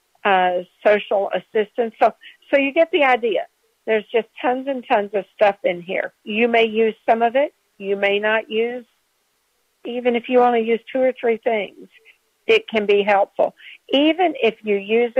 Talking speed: 180 wpm